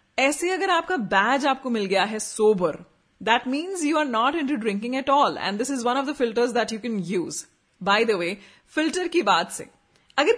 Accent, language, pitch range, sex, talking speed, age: native, Hindi, 195-265 Hz, female, 220 wpm, 30-49